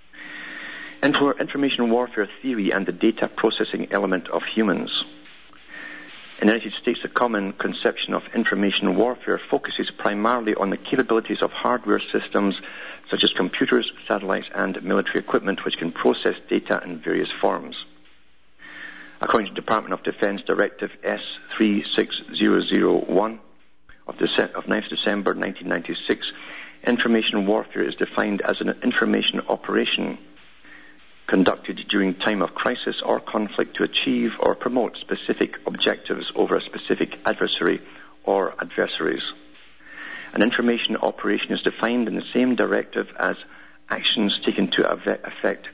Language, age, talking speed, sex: English, 60-79, 125 wpm, male